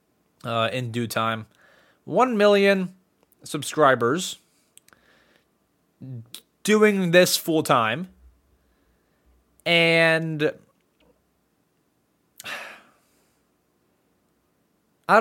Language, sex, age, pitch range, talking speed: English, male, 20-39, 135-205 Hz, 50 wpm